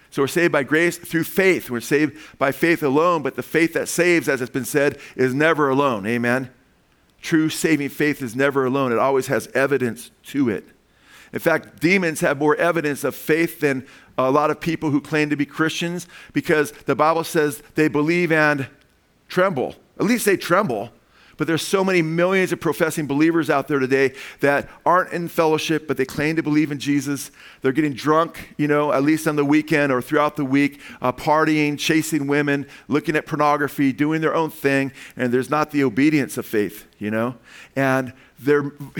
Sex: male